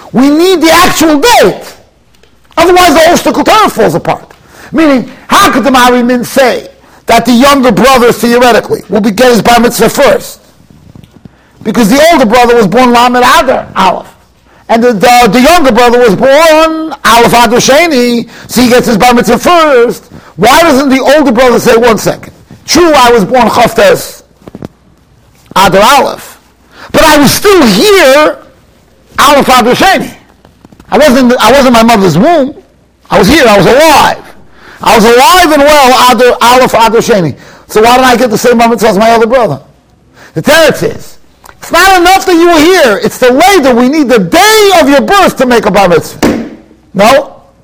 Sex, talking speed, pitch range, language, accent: male, 170 wpm, 235-300 Hz, English, American